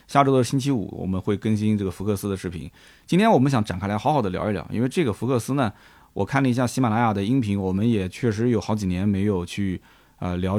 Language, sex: Chinese, male